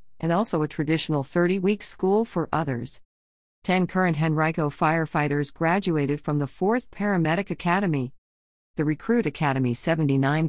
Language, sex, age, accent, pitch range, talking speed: English, female, 50-69, American, 140-180 Hz, 125 wpm